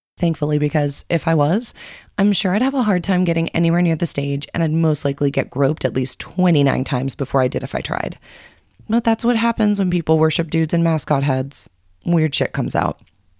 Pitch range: 140-180 Hz